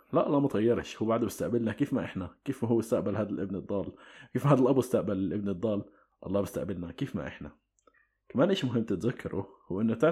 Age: 20-39